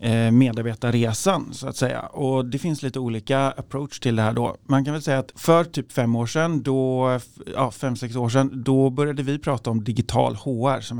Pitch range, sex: 115-135 Hz, male